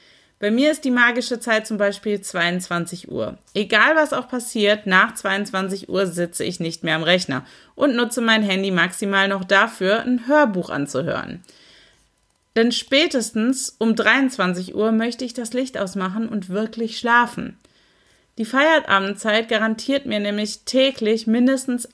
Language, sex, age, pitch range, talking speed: German, female, 30-49, 195-245 Hz, 145 wpm